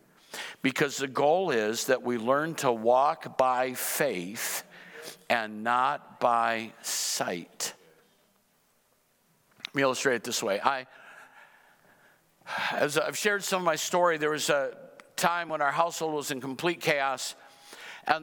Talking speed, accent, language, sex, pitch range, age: 130 wpm, American, English, male, 130-170 Hz, 50-69